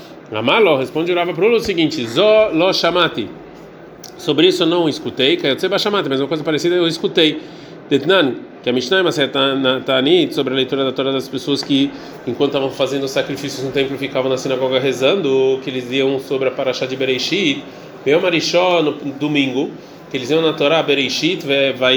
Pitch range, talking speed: 135-180 Hz, 170 wpm